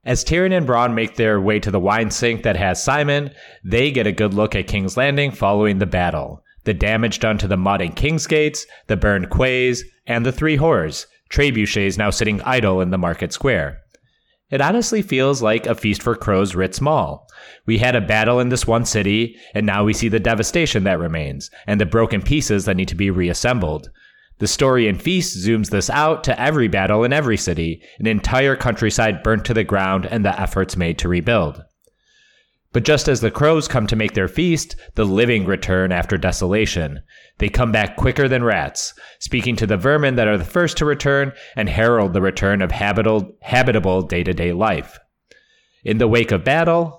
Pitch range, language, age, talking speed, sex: 95-125 Hz, English, 30-49, 195 wpm, male